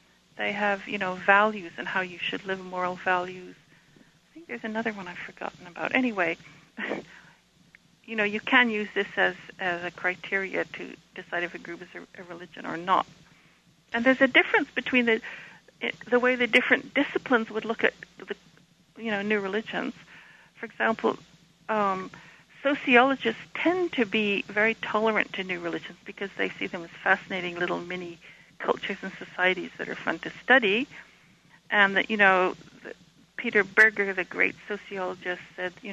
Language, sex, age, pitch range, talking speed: English, female, 60-79, 180-230 Hz, 170 wpm